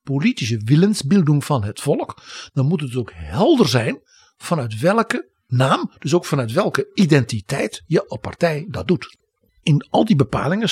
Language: Dutch